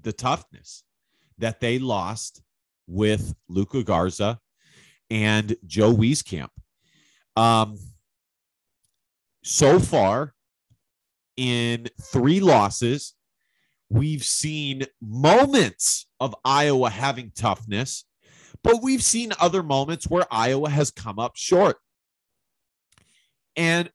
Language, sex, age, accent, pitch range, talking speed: English, male, 30-49, American, 115-165 Hz, 90 wpm